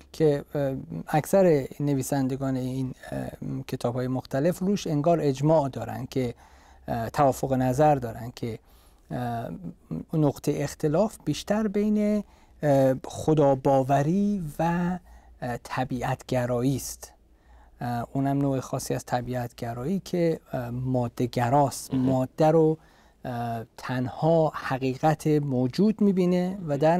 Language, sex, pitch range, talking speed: Persian, male, 125-155 Hz, 90 wpm